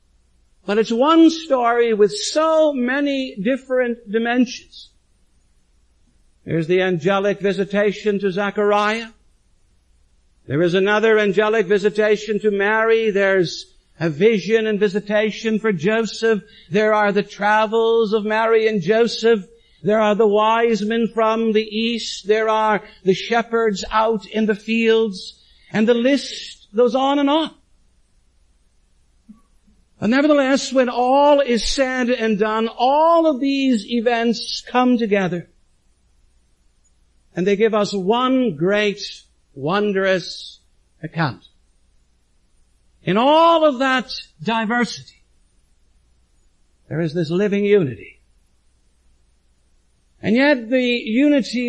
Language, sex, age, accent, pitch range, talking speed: English, male, 60-79, American, 175-230 Hz, 110 wpm